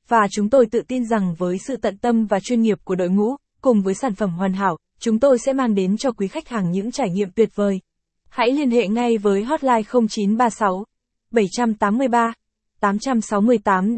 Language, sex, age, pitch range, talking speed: Vietnamese, female, 20-39, 200-250 Hz, 185 wpm